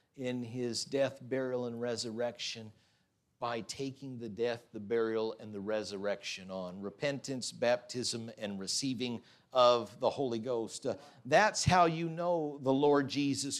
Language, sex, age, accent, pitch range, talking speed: English, male, 50-69, American, 125-175 Hz, 140 wpm